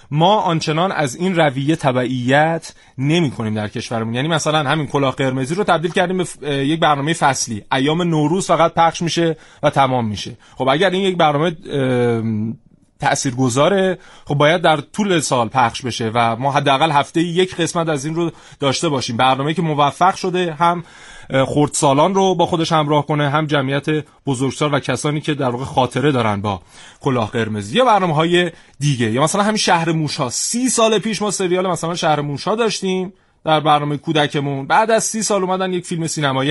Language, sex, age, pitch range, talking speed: Persian, male, 30-49, 135-170 Hz, 180 wpm